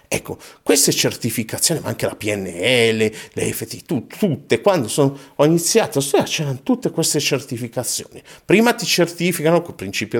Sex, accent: male, native